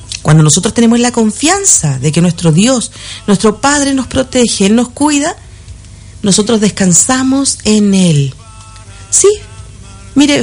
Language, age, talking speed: Spanish, 40-59, 125 wpm